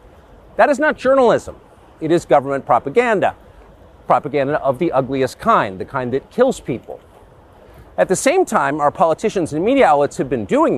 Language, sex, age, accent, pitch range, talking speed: English, male, 40-59, American, 135-215 Hz, 165 wpm